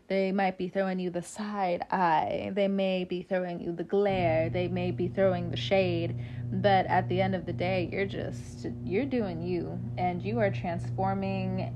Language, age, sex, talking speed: English, 20-39, female, 190 wpm